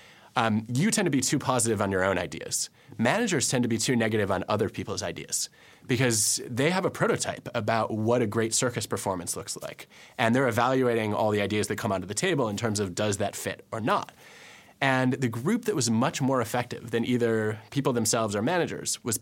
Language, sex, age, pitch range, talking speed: English, male, 20-39, 115-140 Hz, 210 wpm